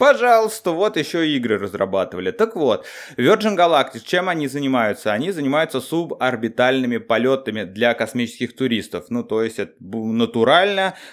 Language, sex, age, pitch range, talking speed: Russian, male, 20-39, 115-180 Hz, 130 wpm